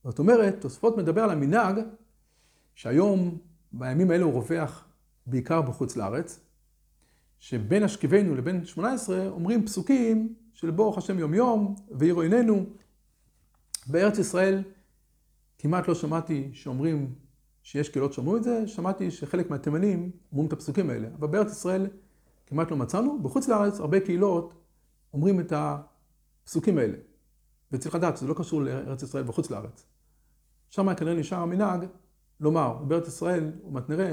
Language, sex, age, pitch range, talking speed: Hebrew, male, 50-69, 150-205 Hz, 115 wpm